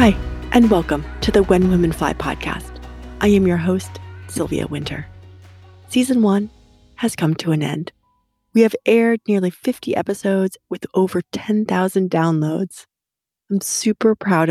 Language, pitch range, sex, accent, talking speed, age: English, 155-200 Hz, female, American, 145 wpm, 30-49